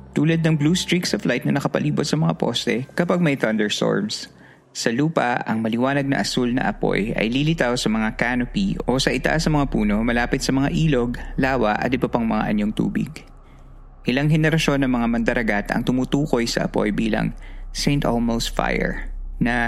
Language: Filipino